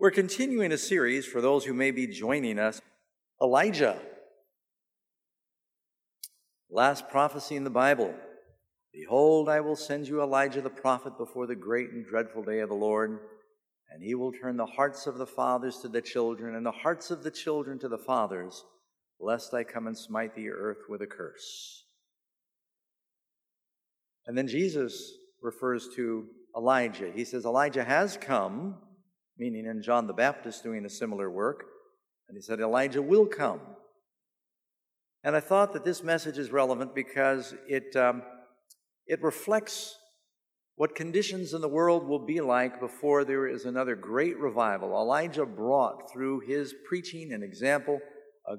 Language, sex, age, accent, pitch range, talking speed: English, male, 50-69, American, 125-185 Hz, 155 wpm